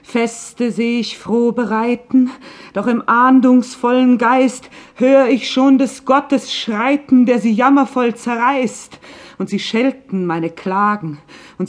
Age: 50-69